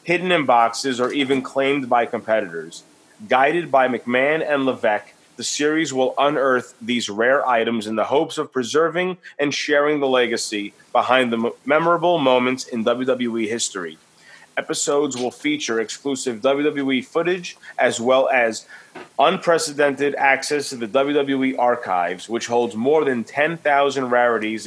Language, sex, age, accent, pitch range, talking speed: English, male, 30-49, American, 120-150 Hz, 140 wpm